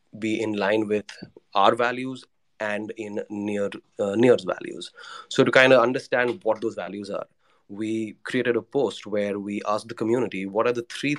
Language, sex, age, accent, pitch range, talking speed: English, male, 20-39, Indian, 100-115 Hz, 180 wpm